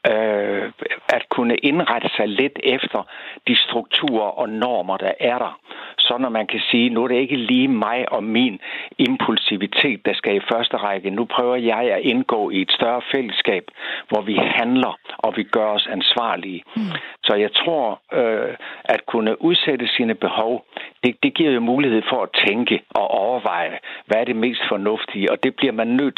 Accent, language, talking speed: native, Danish, 175 wpm